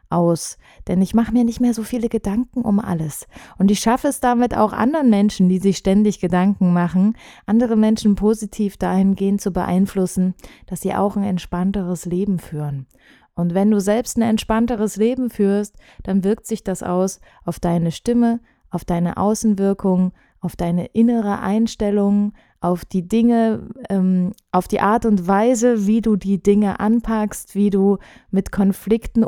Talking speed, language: 160 wpm, German